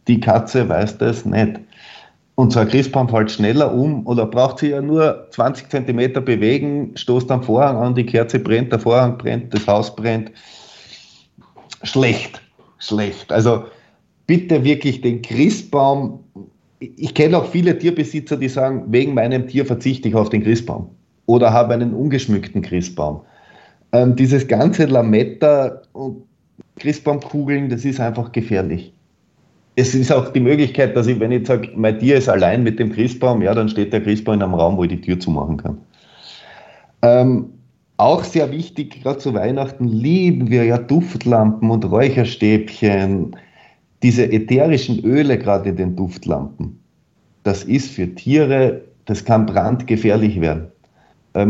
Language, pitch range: German, 110-135 Hz